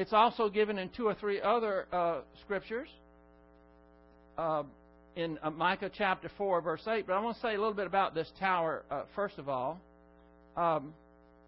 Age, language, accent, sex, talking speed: 60-79, English, American, male, 175 wpm